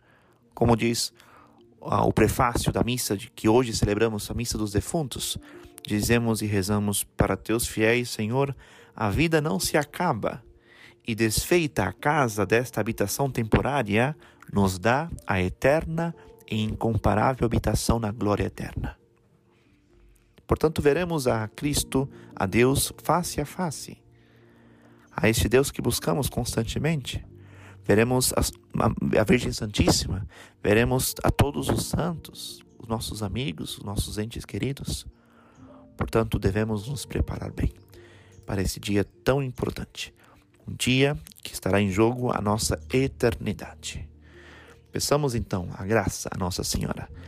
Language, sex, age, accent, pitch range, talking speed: Portuguese, male, 40-59, Brazilian, 100-125 Hz, 130 wpm